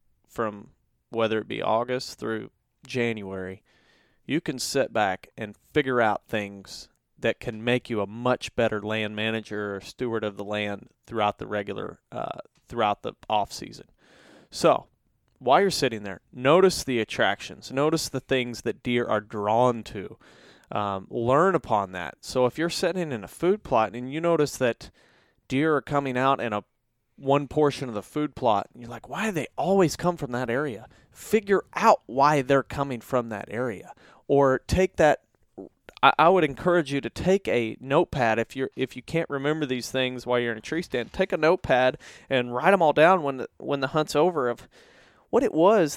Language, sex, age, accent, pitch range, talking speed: English, male, 30-49, American, 115-150 Hz, 185 wpm